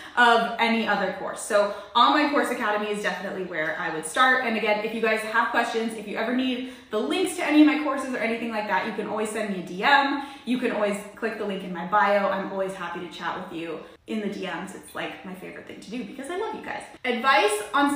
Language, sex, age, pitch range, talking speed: English, female, 20-39, 205-265 Hz, 255 wpm